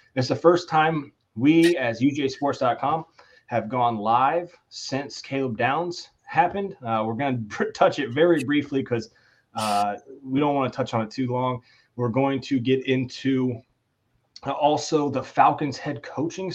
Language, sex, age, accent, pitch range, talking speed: English, male, 30-49, American, 115-145 Hz, 150 wpm